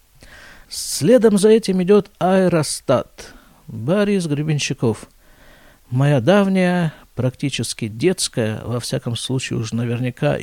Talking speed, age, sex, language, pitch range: 90 wpm, 50-69, male, Russian, 125-170 Hz